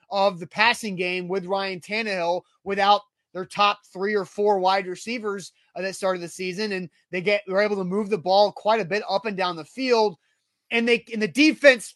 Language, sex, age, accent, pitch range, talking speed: English, male, 30-49, American, 195-245 Hz, 205 wpm